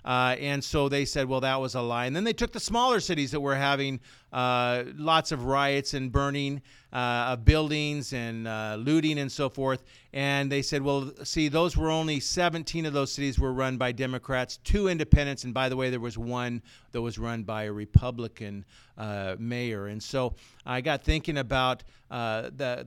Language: English